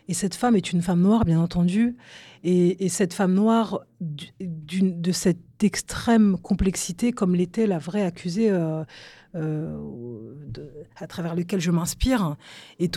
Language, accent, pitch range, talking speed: English, French, 165-205 Hz, 155 wpm